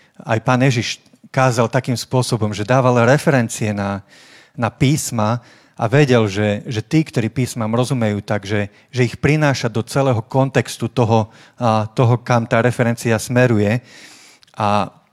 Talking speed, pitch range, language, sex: 135 wpm, 110-130 Hz, Slovak, male